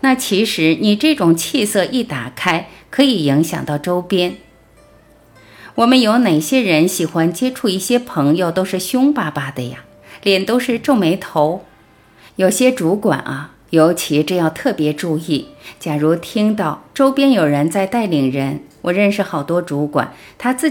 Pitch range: 155-230 Hz